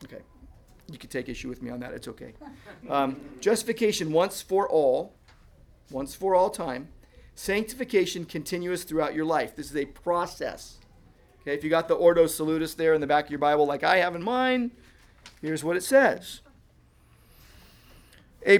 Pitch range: 150-210 Hz